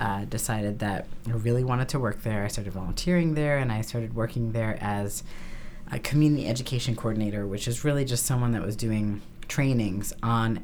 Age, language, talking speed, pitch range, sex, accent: 30-49, English, 185 wpm, 105-130 Hz, female, American